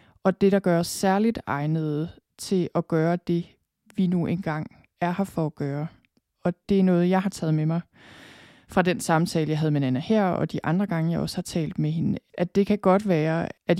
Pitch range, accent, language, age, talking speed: 155-180 Hz, native, Danish, 20-39, 225 wpm